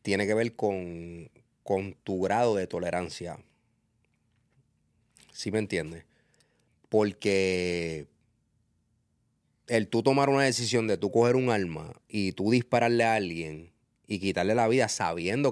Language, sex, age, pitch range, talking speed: Spanish, male, 30-49, 95-120 Hz, 130 wpm